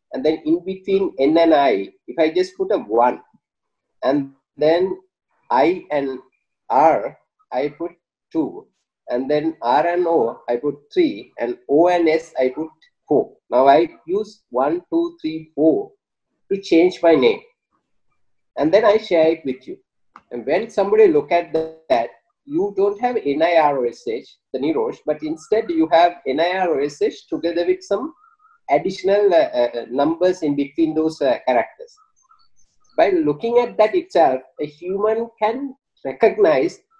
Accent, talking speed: Indian, 150 wpm